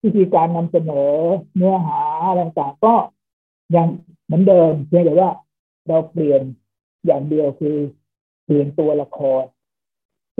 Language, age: Thai, 60-79